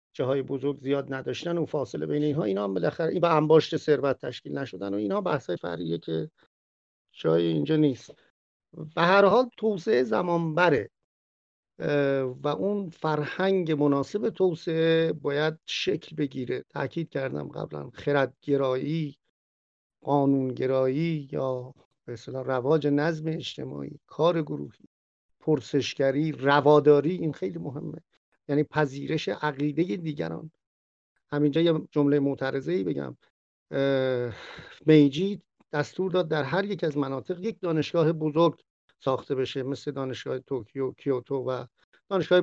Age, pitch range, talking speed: 50-69, 135-165 Hz, 125 wpm